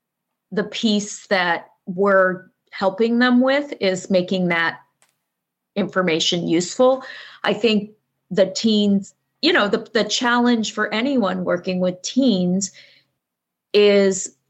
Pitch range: 180-205 Hz